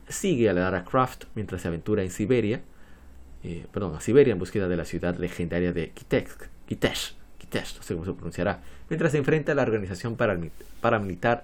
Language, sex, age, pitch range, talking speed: Spanish, male, 30-49, 90-125 Hz, 190 wpm